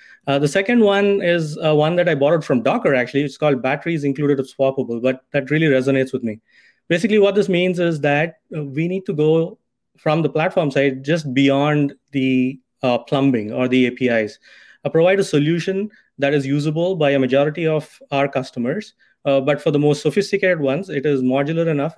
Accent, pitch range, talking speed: Indian, 130-160 Hz, 195 wpm